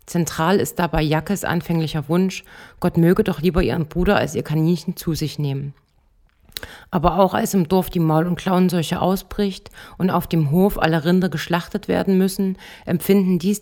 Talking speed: 170 wpm